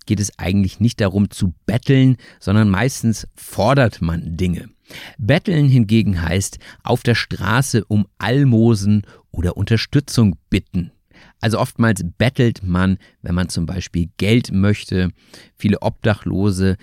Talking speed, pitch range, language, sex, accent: 125 wpm, 95-120 Hz, German, male, German